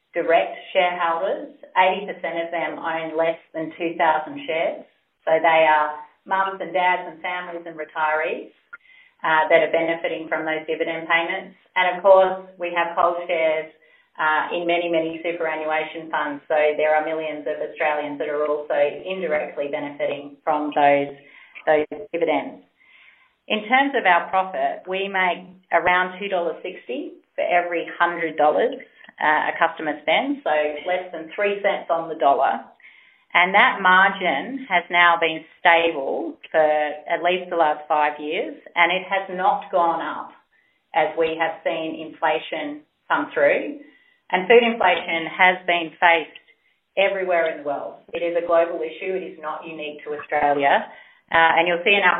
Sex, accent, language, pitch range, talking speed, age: female, Australian, English, 155-180 Hz, 155 wpm, 30-49